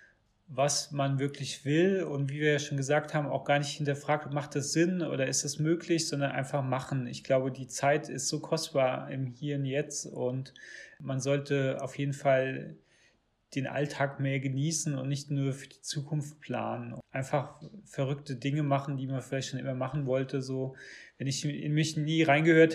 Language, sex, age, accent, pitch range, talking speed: German, male, 30-49, German, 135-150 Hz, 185 wpm